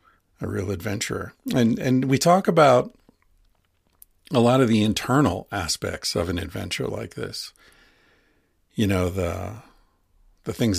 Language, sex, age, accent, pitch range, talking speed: English, male, 50-69, American, 95-110 Hz, 135 wpm